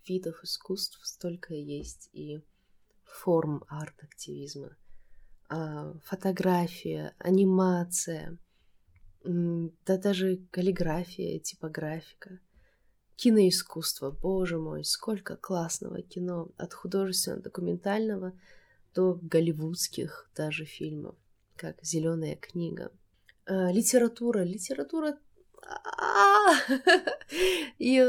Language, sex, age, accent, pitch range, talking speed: Russian, female, 20-39, native, 160-200 Hz, 70 wpm